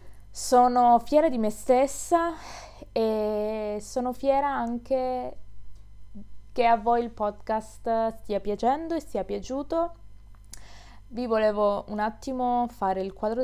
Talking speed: 115 wpm